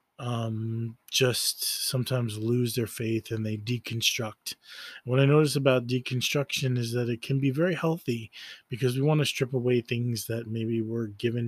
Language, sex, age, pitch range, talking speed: English, male, 20-39, 115-130 Hz, 165 wpm